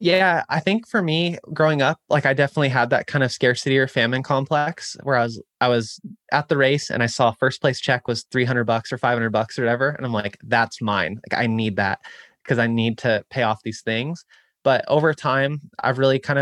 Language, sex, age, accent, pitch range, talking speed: English, male, 20-39, American, 120-145 Hz, 230 wpm